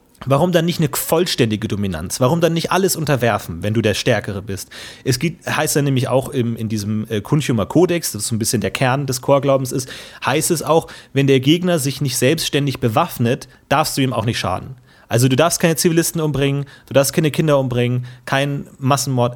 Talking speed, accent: 200 wpm, German